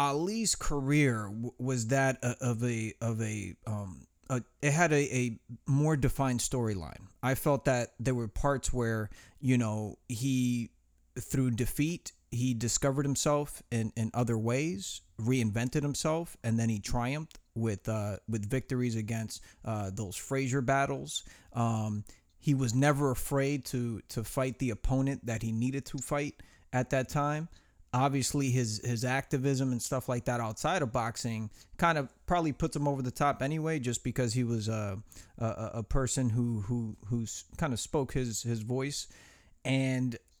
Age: 30-49